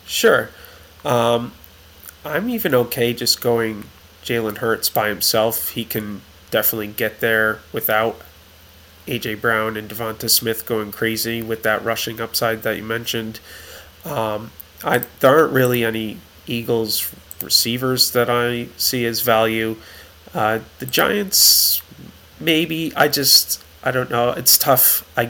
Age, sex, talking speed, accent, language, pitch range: 30-49, male, 130 wpm, American, English, 105-120 Hz